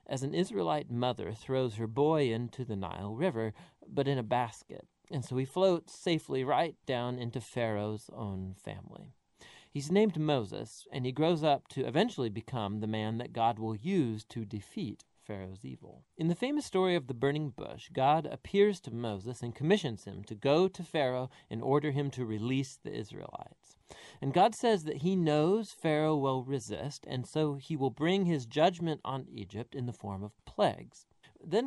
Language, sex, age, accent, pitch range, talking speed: English, male, 40-59, American, 115-160 Hz, 180 wpm